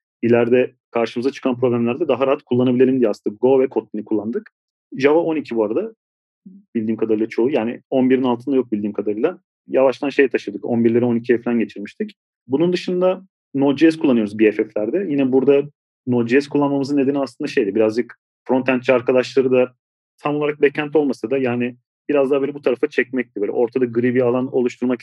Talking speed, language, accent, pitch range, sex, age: 160 wpm, Turkish, native, 120-140 Hz, male, 40-59